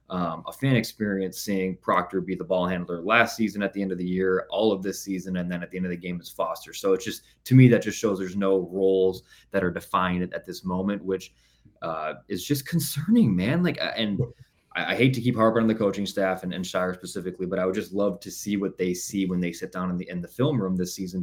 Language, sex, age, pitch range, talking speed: English, male, 20-39, 90-105 Hz, 265 wpm